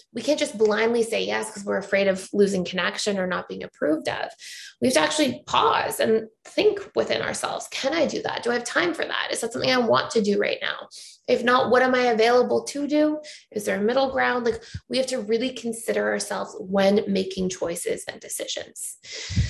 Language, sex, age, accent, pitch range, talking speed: English, female, 20-39, American, 195-240 Hz, 215 wpm